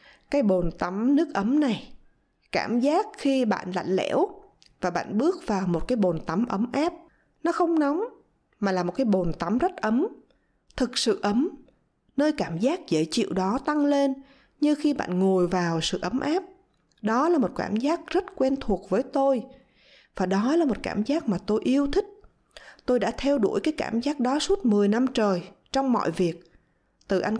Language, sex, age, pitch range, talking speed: Vietnamese, female, 20-39, 190-275 Hz, 195 wpm